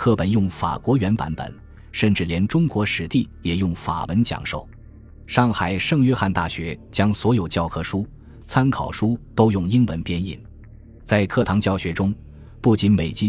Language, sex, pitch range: Chinese, male, 85-115 Hz